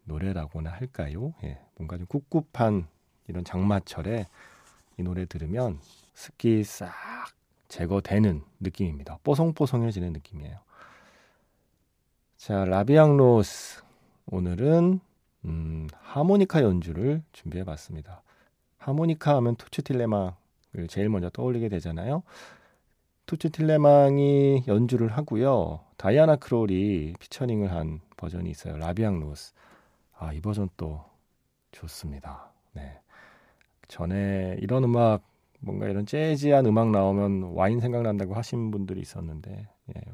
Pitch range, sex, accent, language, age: 90-125 Hz, male, native, Korean, 40-59